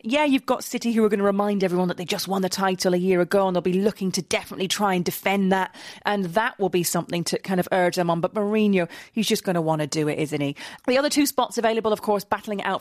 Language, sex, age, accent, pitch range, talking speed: English, female, 30-49, British, 180-225 Hz, 285 wpm